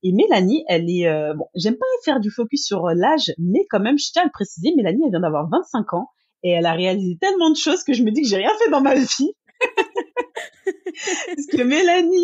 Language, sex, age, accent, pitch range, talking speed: French, female, 30-49, French, 170-230 Hz, 235 wpm